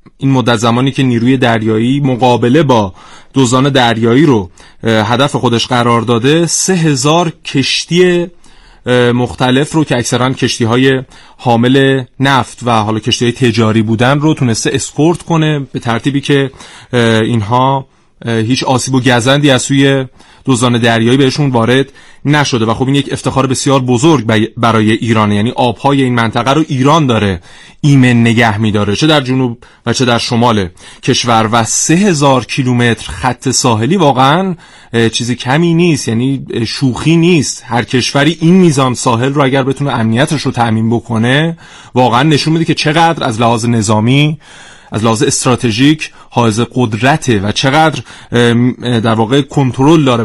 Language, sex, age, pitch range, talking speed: Persian, male, 30-49, 115-140 Hz, 145 wpm